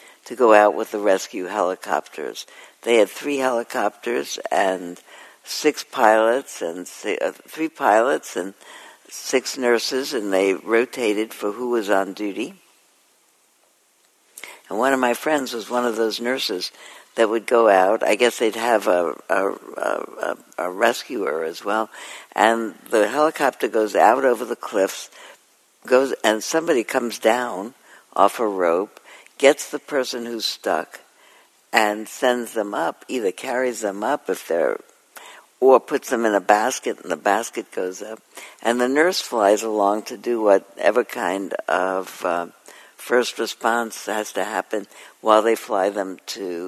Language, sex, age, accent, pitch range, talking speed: English, female, 60-79, American, 100-125 Hz, 150 wpm